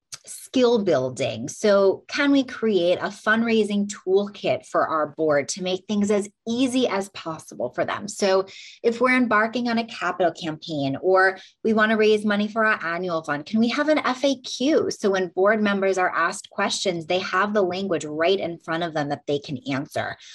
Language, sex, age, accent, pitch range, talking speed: English, female, 20-39, American, 165-220 Hz, 190 wpm